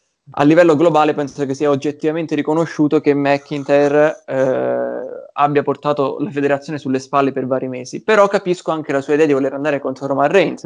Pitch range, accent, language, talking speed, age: 135-150 Hz, native, Italian, 180 wpm, 20-39